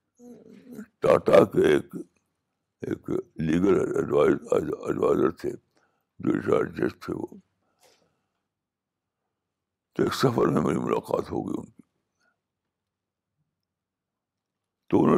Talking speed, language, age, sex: 65 wpm, Urdu, 60-79, male